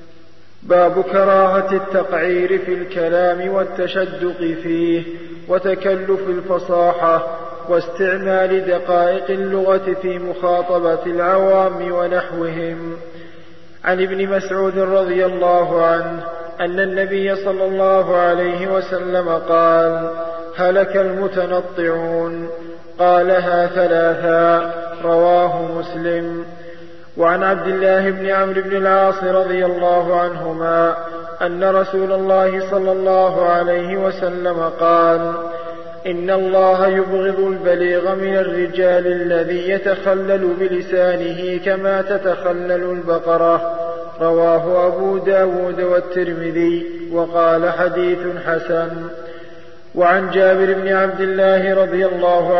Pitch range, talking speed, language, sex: 170-190 Hz, 90 wpm, Arabic, male